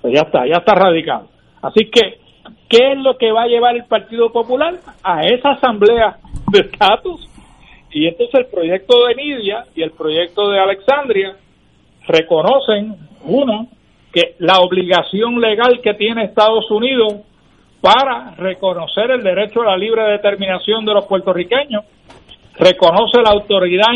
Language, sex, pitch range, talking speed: Spanish, male, 190-240 Hz, 145 wpm